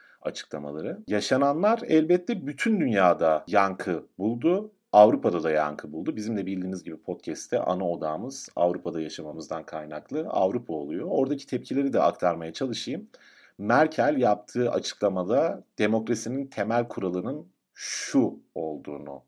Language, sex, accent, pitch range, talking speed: Turkish, male, native, 95-130 Hz, 110 wpm